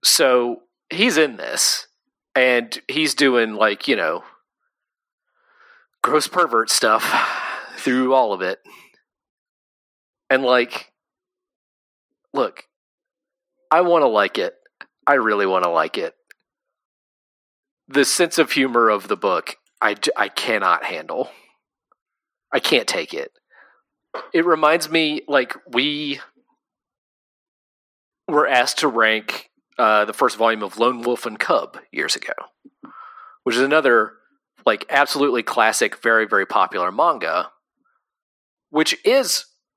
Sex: male